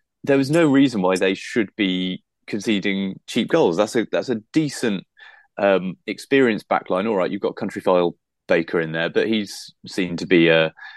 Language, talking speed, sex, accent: English, 180 wpm, male, British